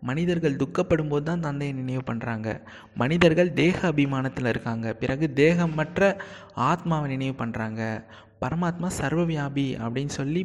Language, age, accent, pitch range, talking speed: Tamil, 20-39, native, 130-170 Hz, 115 wpm